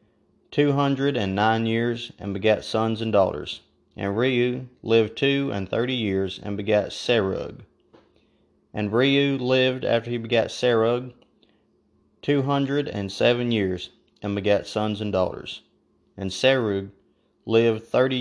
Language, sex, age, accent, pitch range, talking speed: English, male, 30-49, American, 100-120 Hz, 135 wpm